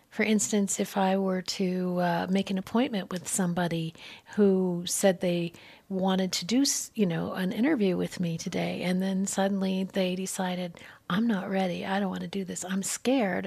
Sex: female